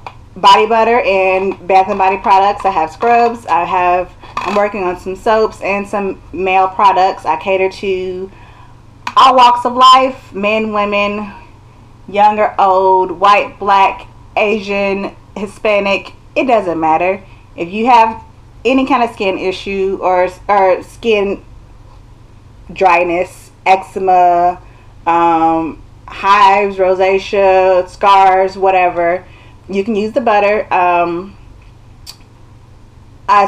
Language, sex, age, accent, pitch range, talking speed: English, female, 20-39, American, 175-215 Hz, 115 wpm